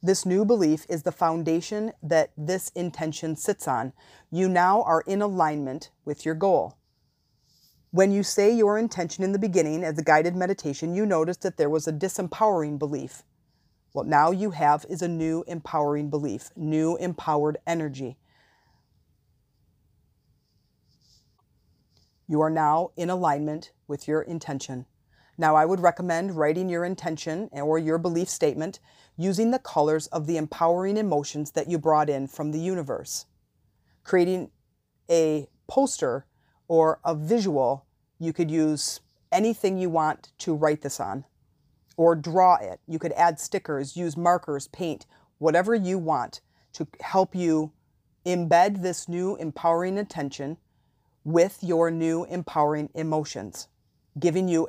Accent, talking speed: American, 140 wpm